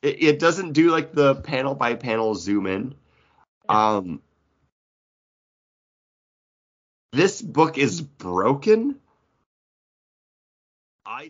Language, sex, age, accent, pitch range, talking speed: English, male, 30-49, American, 115-155 Hz, 65 wpm